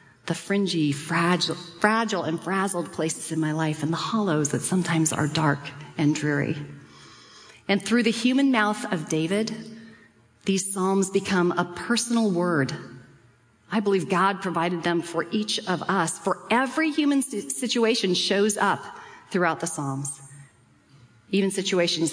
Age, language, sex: 40-59, English, female